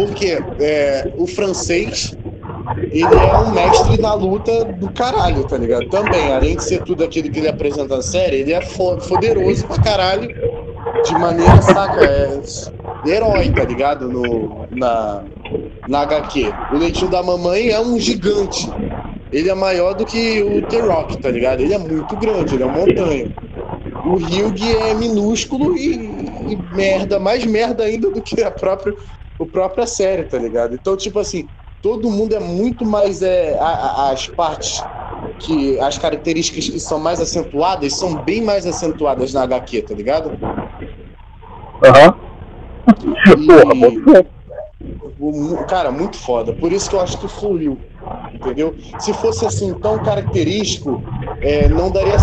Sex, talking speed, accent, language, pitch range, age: male, 155 wpm, Brazilian, Portuguese, 140-210 Hz, 20-39